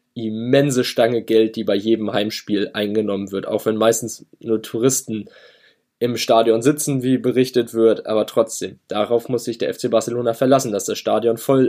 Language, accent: German, German